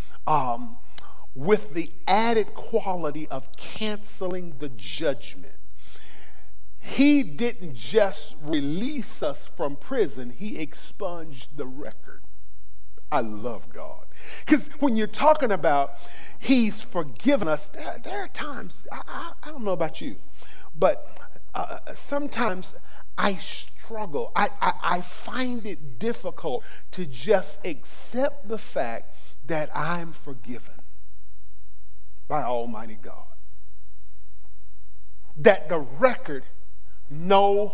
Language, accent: English, American